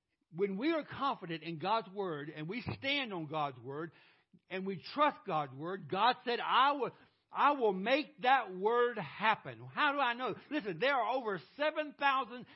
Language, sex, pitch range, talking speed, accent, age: English, male, 180-255 Hz, 175 wpm, American, 60-79